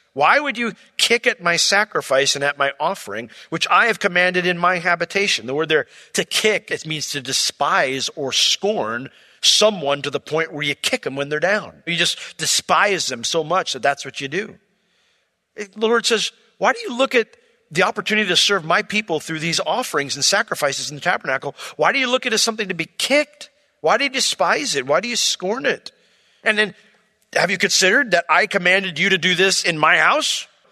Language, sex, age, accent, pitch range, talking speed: English, male, 40-59, American, 170-240 Hz, 215 wpm